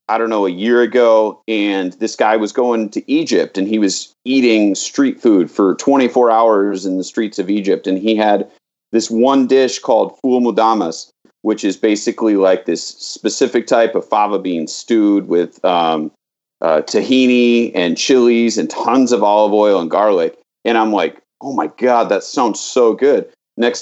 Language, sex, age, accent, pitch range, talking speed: English, male, 40-59, American, 100-130 Hz, 180 wpm